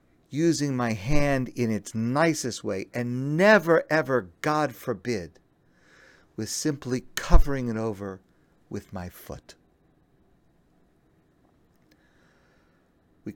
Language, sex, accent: English, male, American